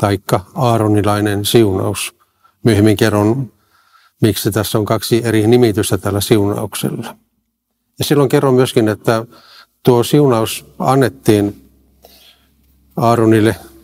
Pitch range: 100-120 Hz